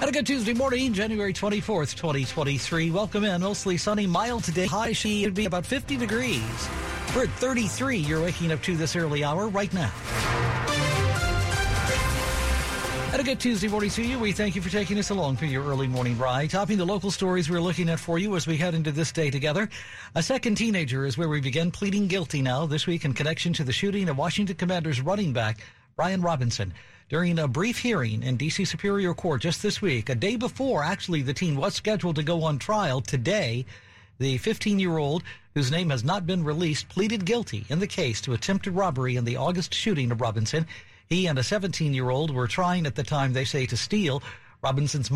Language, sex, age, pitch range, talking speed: English, male, 60-79, 130-190 Hz, 200 wpm